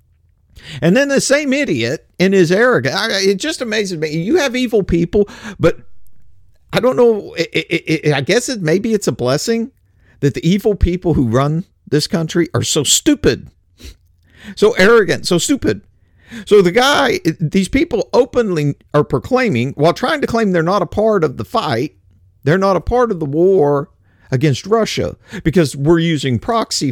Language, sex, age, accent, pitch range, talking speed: English, male, 50-69, American, 130-205 Hz, 170 wpm